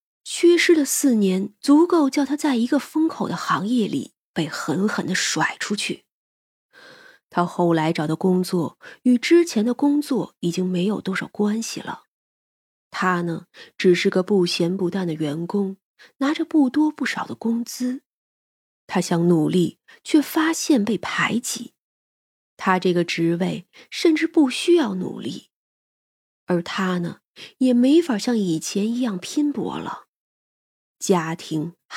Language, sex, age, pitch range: Chinese, female, 20-39, 185-285 Hz